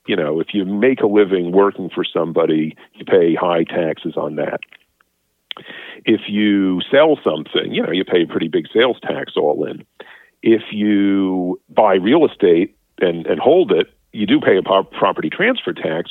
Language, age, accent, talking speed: English, 50-69, American, 180 wpm